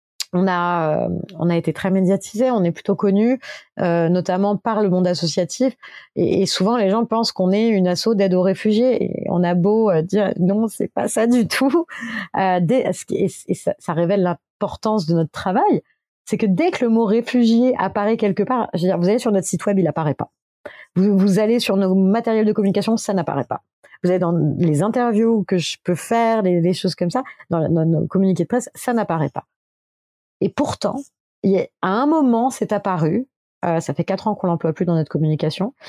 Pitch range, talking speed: 180-235 Hz, 210 wpm